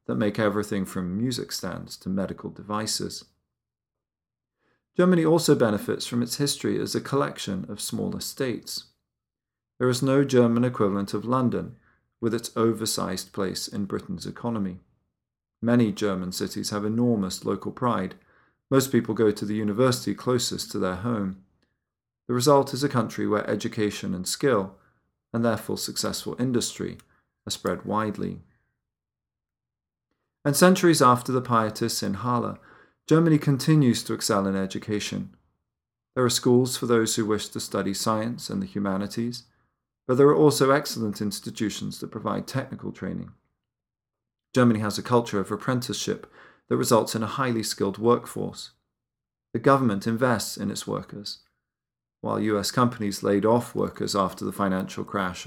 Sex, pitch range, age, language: male, 105-125 Hz, 40-59, English